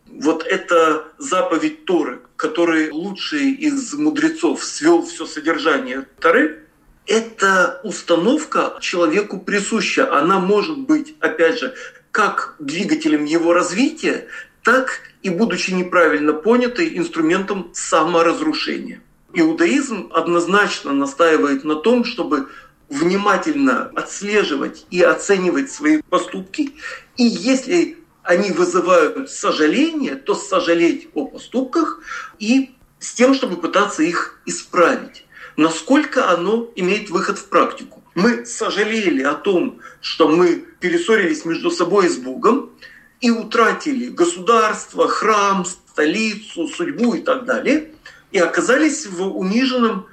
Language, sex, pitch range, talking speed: Russian, male, 180-300 Hz, 110 wpm